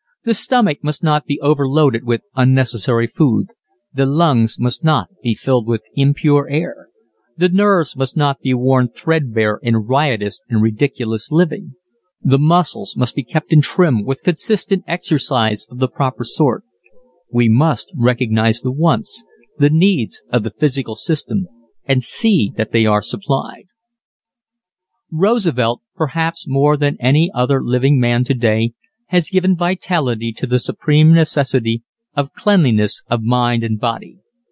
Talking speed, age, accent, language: 145 wpm, 50-69, American, English